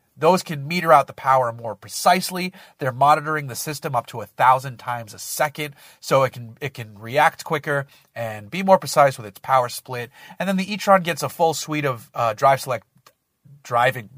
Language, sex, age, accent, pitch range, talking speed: English, male, 30-49, American, 120-155 Hz, 200 wpm